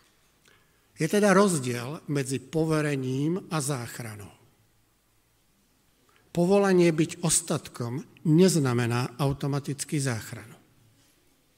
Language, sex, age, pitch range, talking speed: Slovak, male, 50-69, 120-160 Hz, 65 wpm